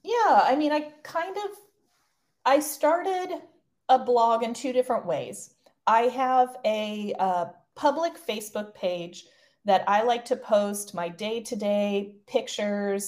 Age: 30-49